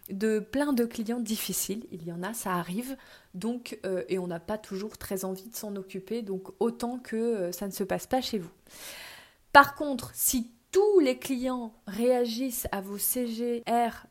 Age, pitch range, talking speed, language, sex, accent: 20-39, 190-235 Hz, 185 wpm, French, female, French